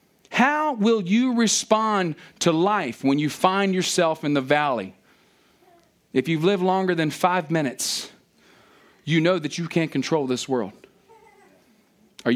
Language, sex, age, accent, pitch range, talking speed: English, male, 40-59, American, 150-220 Hz, 140 wpm